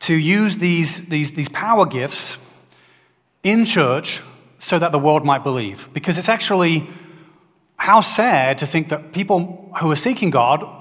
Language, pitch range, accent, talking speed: English, 140-180 Hz, British, 155 wpm